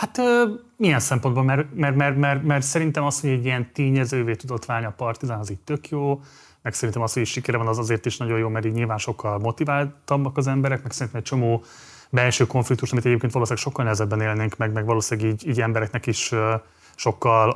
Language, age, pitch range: Hungarian, 30-49, 110-130 Hz